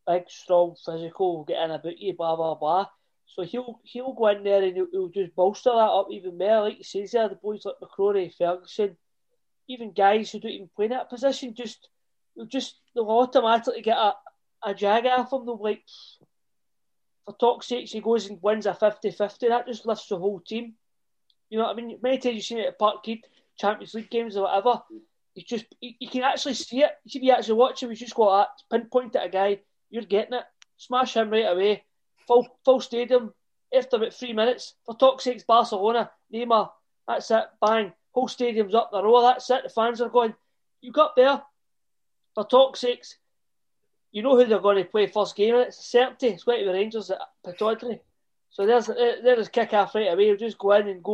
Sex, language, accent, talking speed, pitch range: male, English, British, 210 wpm, 205-250 Hz